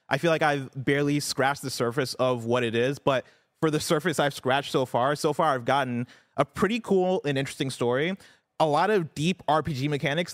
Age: 20-39